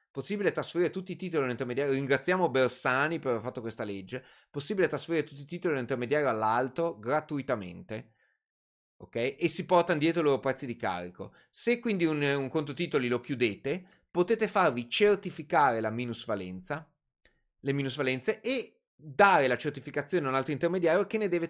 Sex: male